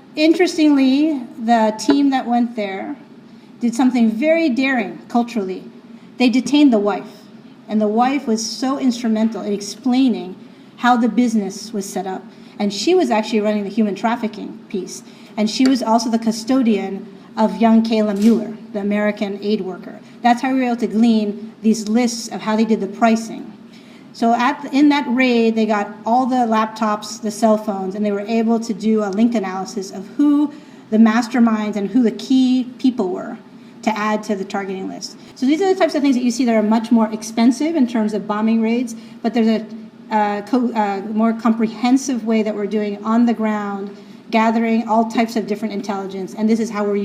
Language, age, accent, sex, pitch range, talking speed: English, 40-59, American, female, 215-245 Hz, 190 wpm